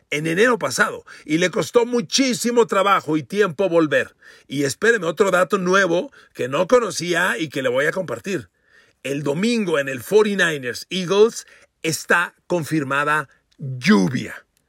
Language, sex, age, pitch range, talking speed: Spanish, male, 40-59, 155-235 Hz, 140 wpm